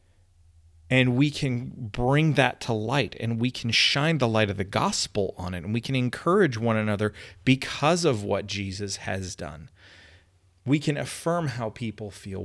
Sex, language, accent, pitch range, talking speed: male, English, American, 100-125 Hz, 175 wpm